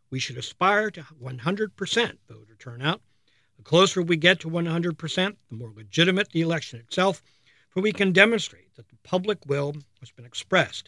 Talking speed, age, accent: 165 wpm, 60-79, American